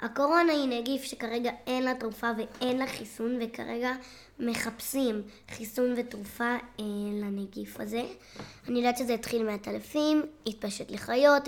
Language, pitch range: Hebrew, 220-260 Hz